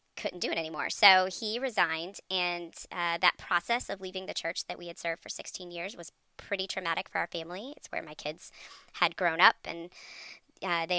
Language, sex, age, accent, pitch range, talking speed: English, male, 20-39, American, 175-215 Hz, 215 wpm